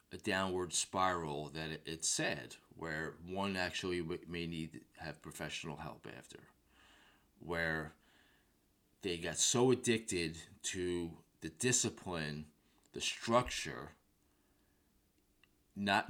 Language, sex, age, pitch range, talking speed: English, male, 20-39, 80-100 Hz, 100 wpm